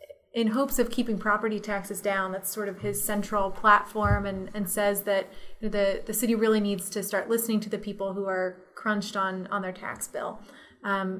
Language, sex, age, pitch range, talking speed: English, female, 20-39, 195-220 Hz, 200 wpm